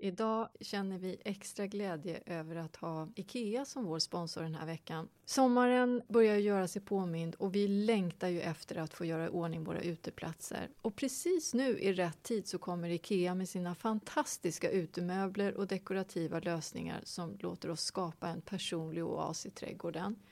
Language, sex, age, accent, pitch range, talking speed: English, female, 30-49, Swedish, 170-225 Hz, 170 wpm